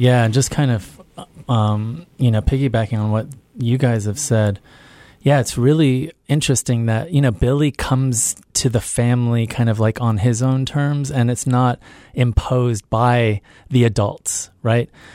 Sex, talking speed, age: male, 165 wpm, 30-49